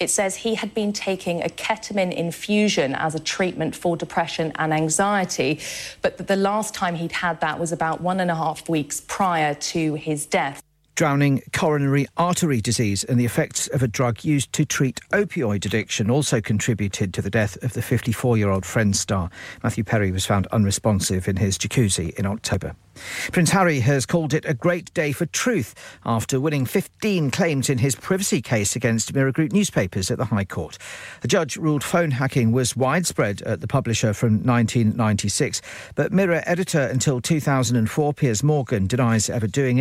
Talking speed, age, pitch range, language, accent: 175 wpm, 50-69, 110-165 Hz, English, British